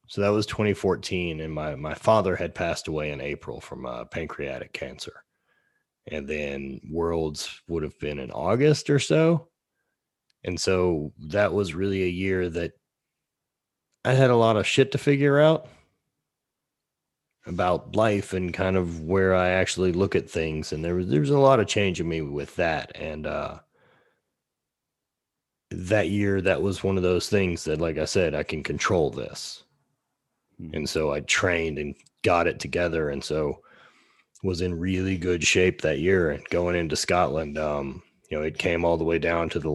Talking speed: 175 wpm